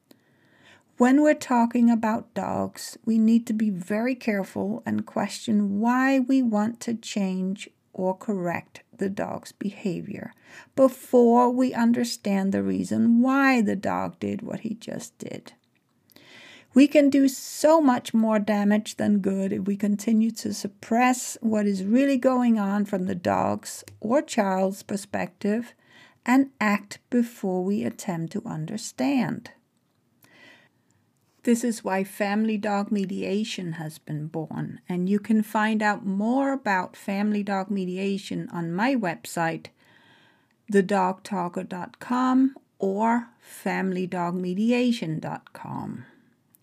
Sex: female